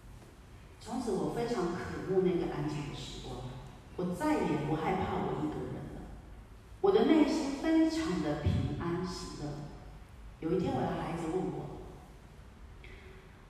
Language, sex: Chinese, female